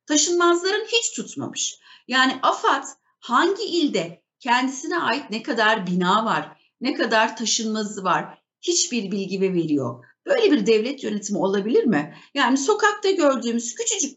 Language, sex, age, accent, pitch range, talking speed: Turkish, female, 60-79, native, 220-295 Hz, 125 wpm